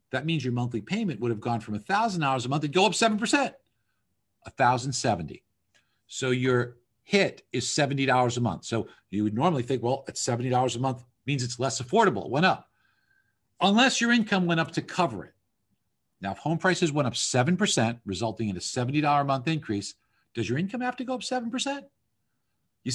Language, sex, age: English, male, 50-69